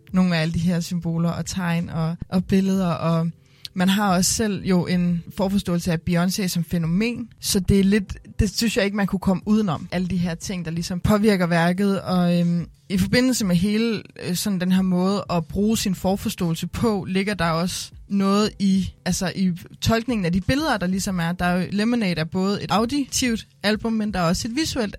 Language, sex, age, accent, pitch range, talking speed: Danish, female, 20-39, native, 170-210 Hz, 205 wpm